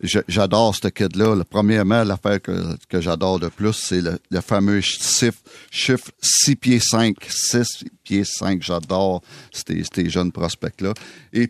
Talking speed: 140 wpm